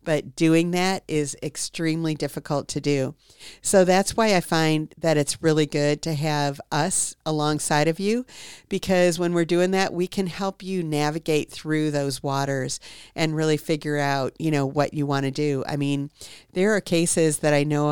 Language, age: English, 50-69